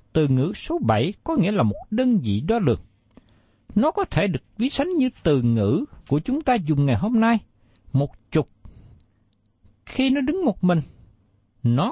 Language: Vietnamese